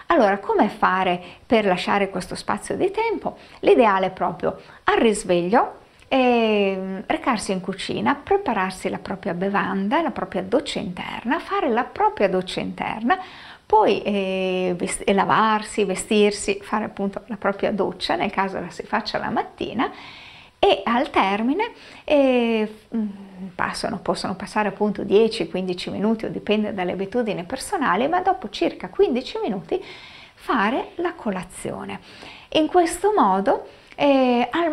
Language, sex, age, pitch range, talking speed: Italian, female, 50-69, 190-280 Hz, 130 wpm